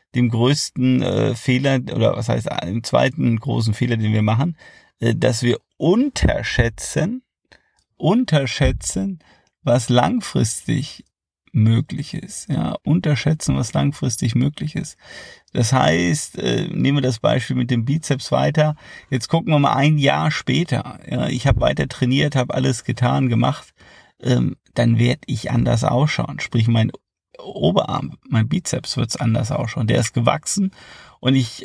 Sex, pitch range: male, 120-145 Hz